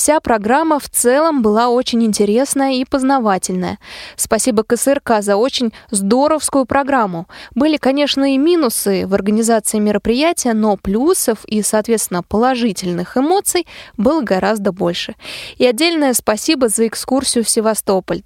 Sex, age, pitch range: female, 20-39, 215-270 Hz